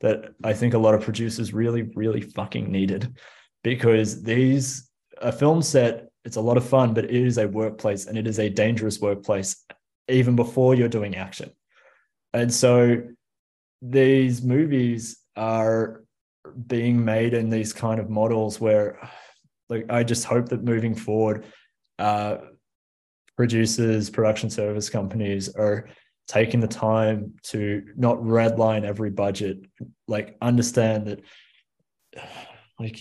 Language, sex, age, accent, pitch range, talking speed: English, male, 20-39, Australian, 105-120 Hz, 135 wpm